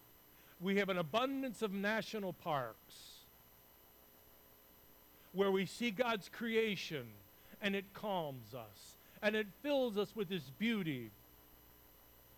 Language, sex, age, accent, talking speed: English, male, 60-79, American, 110 wpm